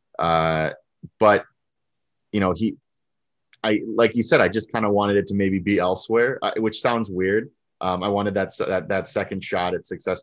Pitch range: 85-105 Hz